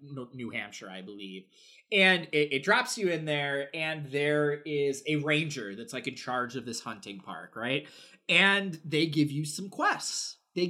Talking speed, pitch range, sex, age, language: 180 wpm, 130-185 Hz, male, 20-39, English